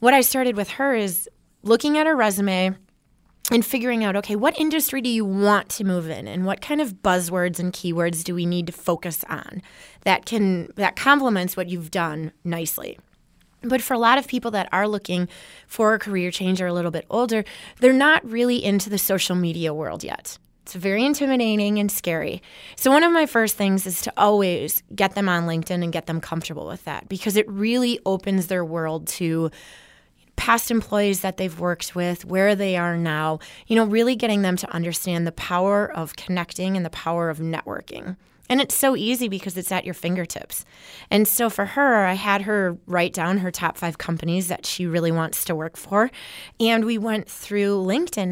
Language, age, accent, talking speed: English, 20-39, American, 200 wpm